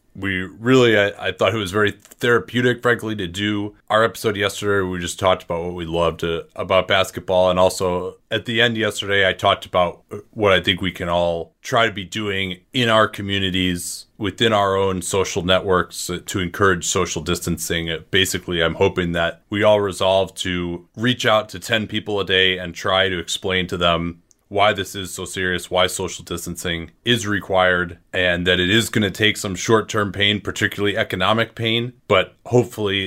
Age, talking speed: 30-49, 185 wpm